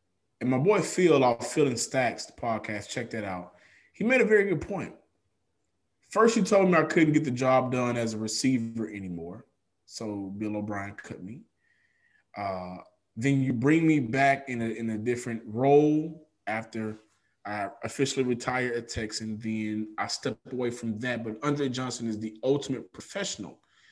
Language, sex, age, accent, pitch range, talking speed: English, male, 20-39, American, 115-155 Hz, 175 wpm